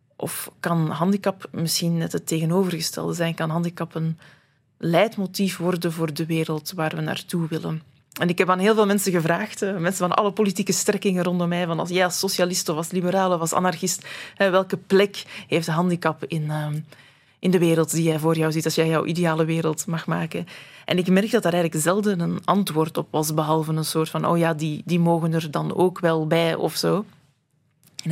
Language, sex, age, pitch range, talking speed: Dutch, female, 20-39, 160-185 Hz, 205 wpm